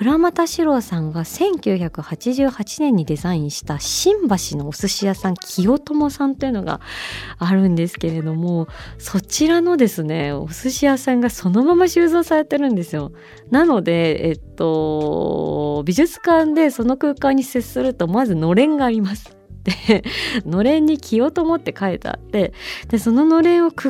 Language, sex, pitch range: Japanese, female, 160-245 Hz